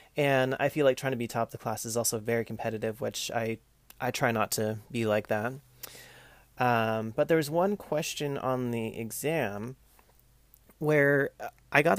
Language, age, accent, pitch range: English, 30-49, American, 110-130 Hz